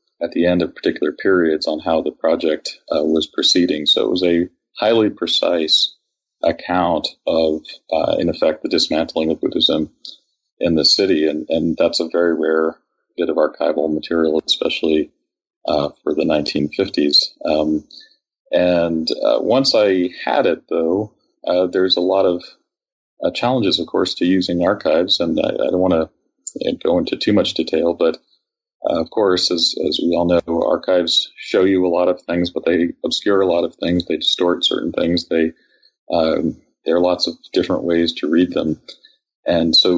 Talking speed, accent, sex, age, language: 175 wpm, American, male, 40-59, English